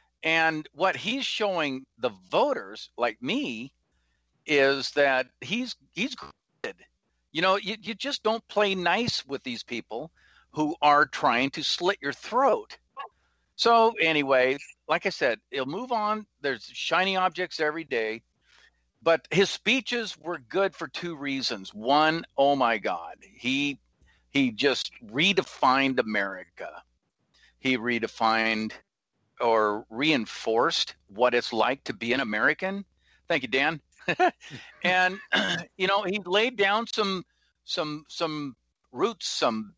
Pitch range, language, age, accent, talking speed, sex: 130-200 Hz, English, 50-69, American, 130 wpm, male